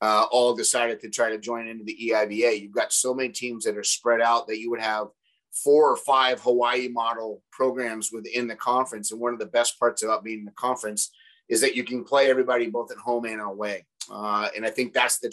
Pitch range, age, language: 120-165 Hz, 30-49, English